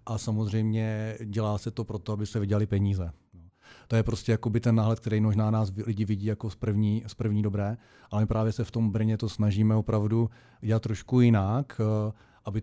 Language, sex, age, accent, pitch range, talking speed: Czech, male, 40-59, native, 110-115 Hz, 190 wpm